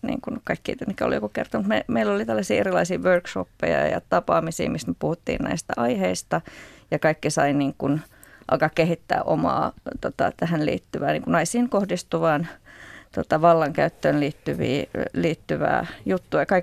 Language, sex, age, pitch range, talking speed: Finnish, female, 30-49, 160-215 Hz, 135 wpm